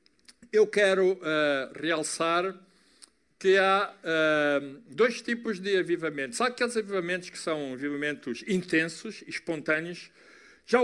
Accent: Brazilian